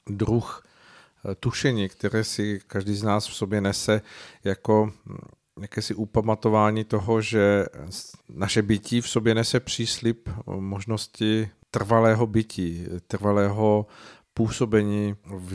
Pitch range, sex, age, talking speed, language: 100-110 Hz, male, 50-69, 105 wpm, Czech